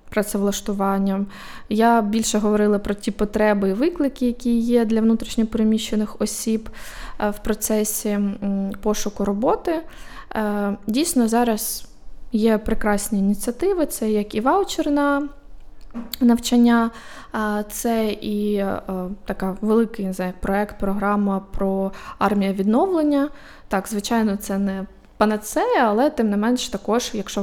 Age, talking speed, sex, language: 20-39, 105 wpm, female, Ukrainian